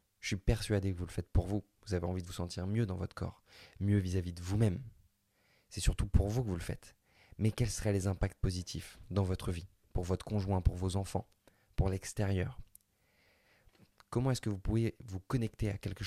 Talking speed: 215 wpm